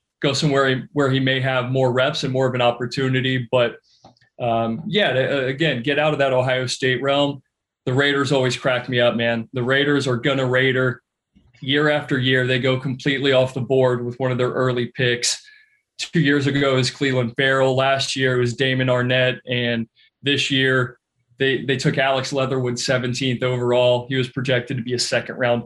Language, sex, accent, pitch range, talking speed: English, male, American, 125-135 Hz, 190 wpm